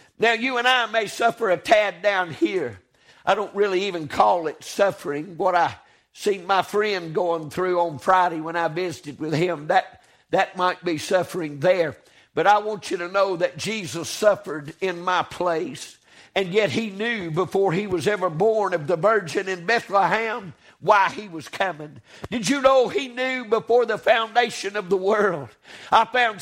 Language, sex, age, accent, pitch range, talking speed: English, male, 50-69, American, 200-255 Hz, 180 wpm